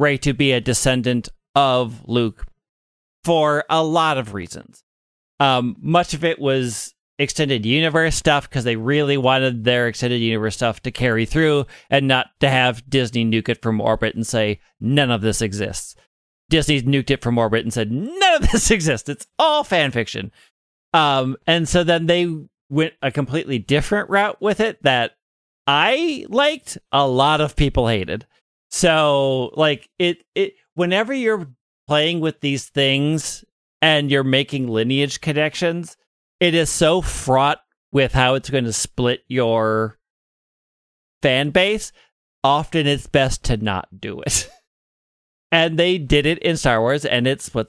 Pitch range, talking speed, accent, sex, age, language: 120-160 Hz, 160 wpm, American, male, 40-59, English